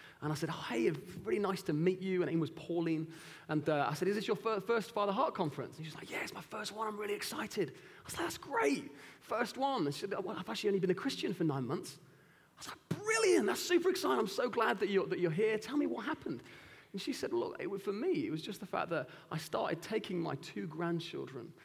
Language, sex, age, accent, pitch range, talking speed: English, male, 30-49, British, 135-175 Hz, 265 wpm